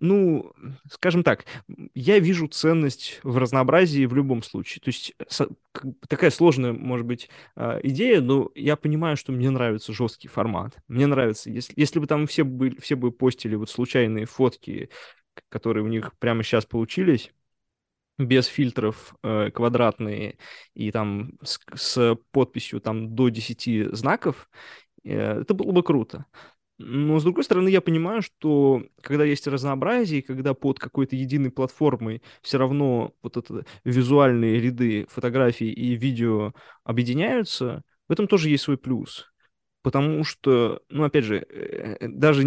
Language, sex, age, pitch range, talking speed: Russian, male, 20-39, 115-145 Hz, 140 wpm